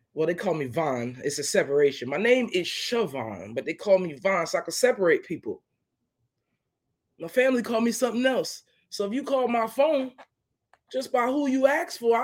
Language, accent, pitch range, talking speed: English, American, 180-270 Hz, 195 wpm